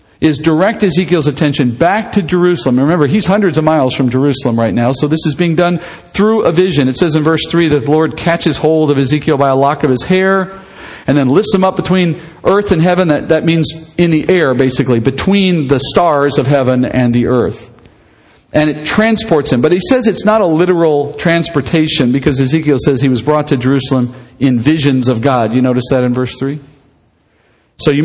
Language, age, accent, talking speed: English, 50-69, American, 210 wpm